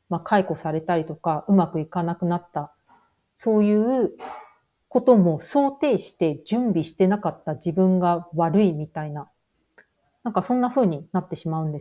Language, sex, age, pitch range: Japanese, female, 40-59, 160-205 Hz